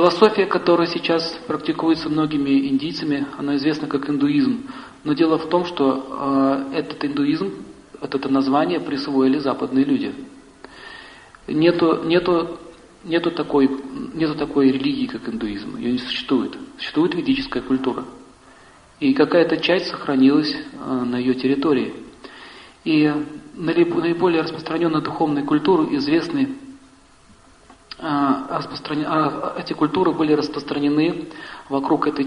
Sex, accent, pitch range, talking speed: male, native, 135-170 Hz, 105 wpm